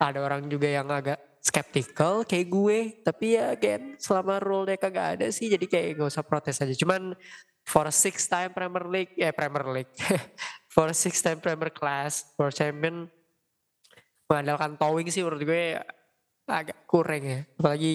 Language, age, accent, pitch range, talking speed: Indonesian, 20-39, native, 140-170 Hz, 170 wpm